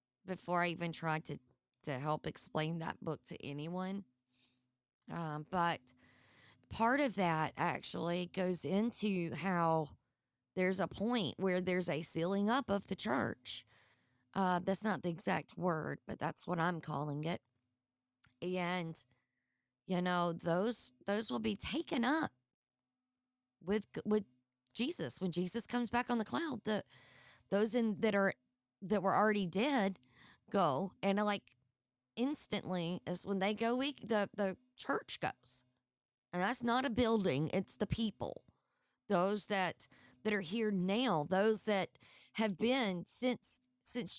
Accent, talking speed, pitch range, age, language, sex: American, 145 wpm, 150-215 Hz, 20-39, English, female